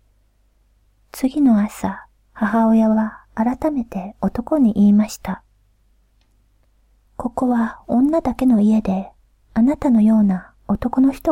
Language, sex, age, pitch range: Japanese, female, 40-59, 200-260 Hz